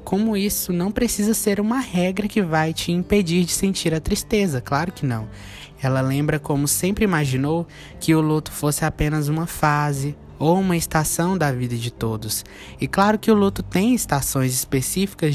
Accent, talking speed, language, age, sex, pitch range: Brazilian, 175 wpm, Portuguese, 20-39, male, 130-175 Hz